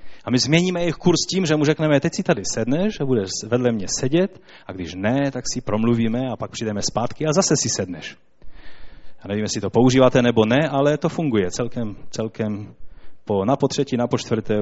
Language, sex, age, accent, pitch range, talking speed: Czech, male, 30-49, native, 110-145 Hz, 200 wpm